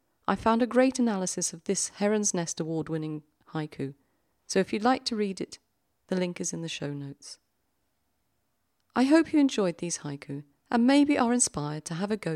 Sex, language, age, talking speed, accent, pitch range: female, English, 40-59, 190 wpm, British, 130-220 Hz